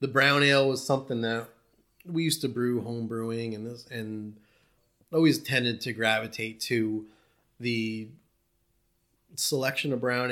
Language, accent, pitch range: English, American, 110-130 Hz